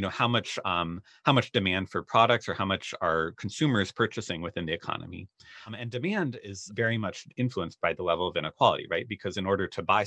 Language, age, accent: English, 30-49, American